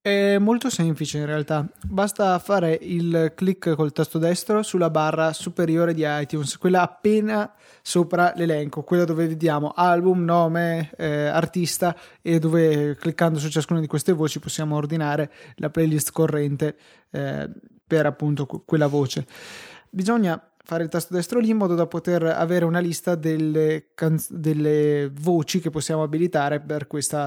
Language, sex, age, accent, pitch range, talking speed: Italian, male, 20-39, native, 150-180 Hz, 145 wpm